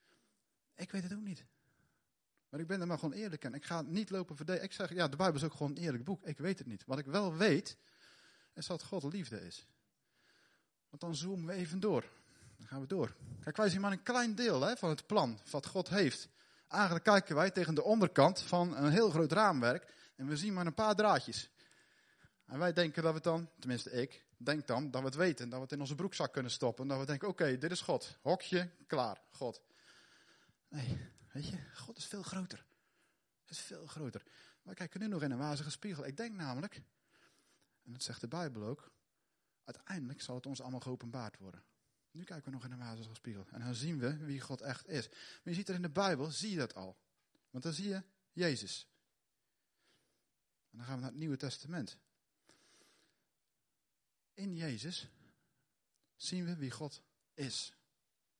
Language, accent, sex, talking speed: Dutch, Dutch, male, 205 wpm